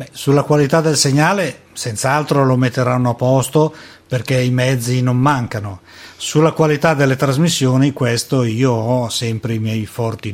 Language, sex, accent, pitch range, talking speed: Italian, male, native, 125-160 Hz, 145 wpm